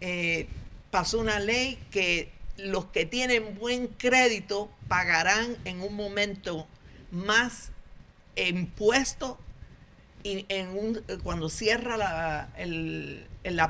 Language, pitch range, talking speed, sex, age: English, 160-225 Hz, 90 wpm, female, 50-69